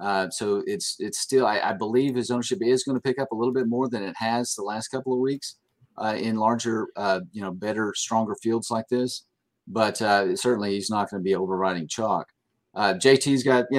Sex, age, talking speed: male, 40-59, 225 wpm